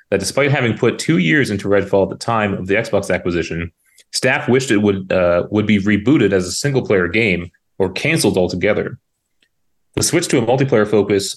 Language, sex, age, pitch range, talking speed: English, male, 30-49, 95-110 Hz, 185 wpm